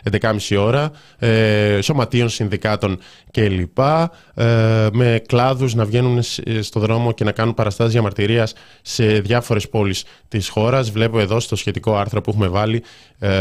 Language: Greek